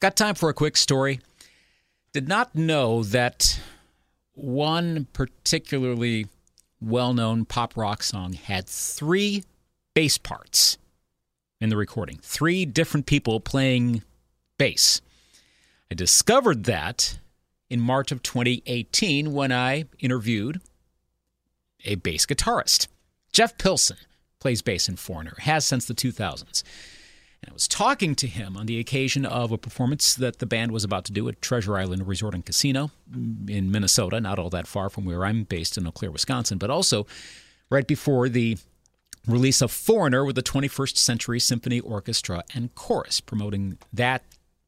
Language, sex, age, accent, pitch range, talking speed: English, male, 40-59, American, 95-135 Hz, 145 wpm